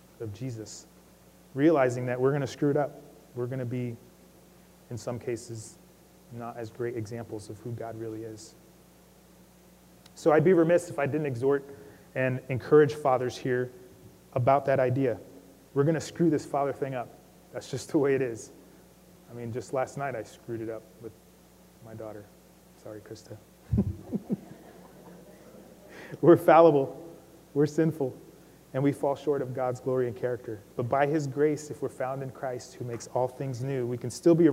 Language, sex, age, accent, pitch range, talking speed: English, male, 30-49, American, 115-145 Hz, 175 wpm